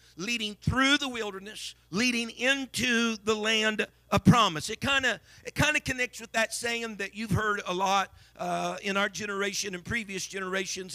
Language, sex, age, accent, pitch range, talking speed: English, male, 50-69, American, 185-235 Hz, 160 wpm